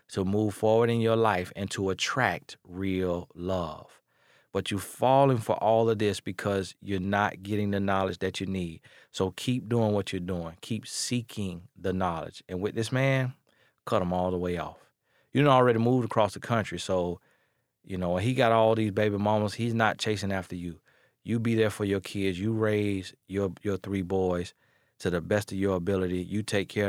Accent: American